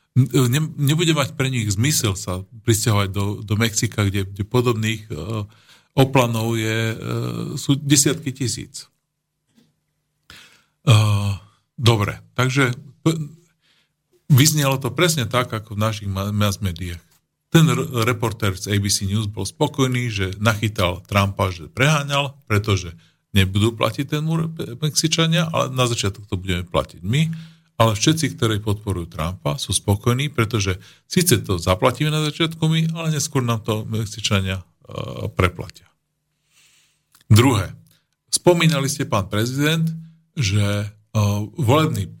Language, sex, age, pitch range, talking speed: Slovak, male, 50-69, 105-150 Hz, 125 wpm